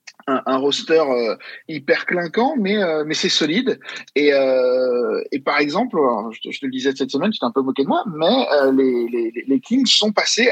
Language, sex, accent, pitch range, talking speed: French, male, French, 135-185 Hz, 220 wpm